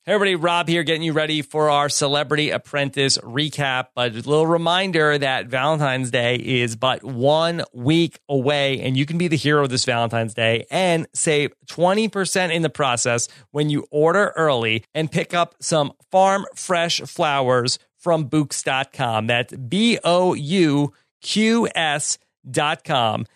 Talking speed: 135 wpm